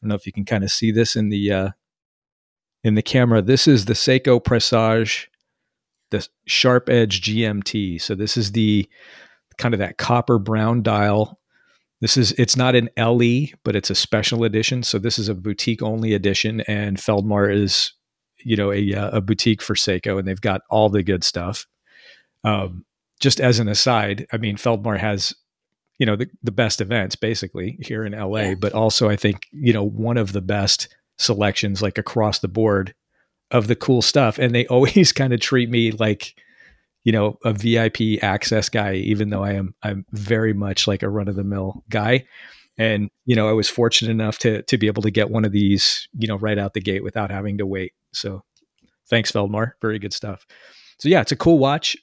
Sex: male